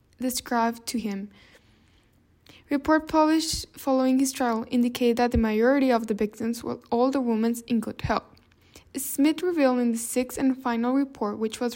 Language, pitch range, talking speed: English, 230-260 Hz, 165 wpm